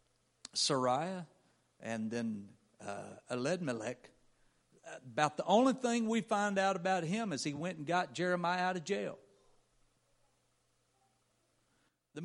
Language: English